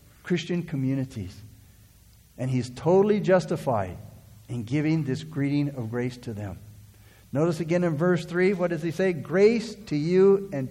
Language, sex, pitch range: English, male, 110-160 Hz